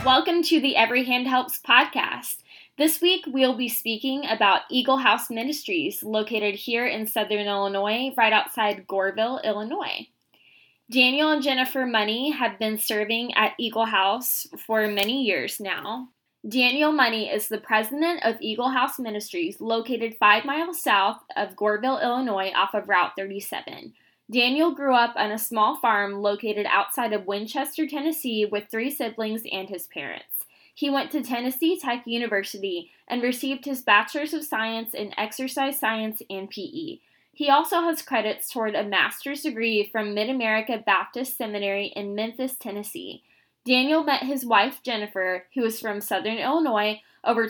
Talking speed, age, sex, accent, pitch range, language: 150 wpm, 10-29, female, American, 210-270 Hz, English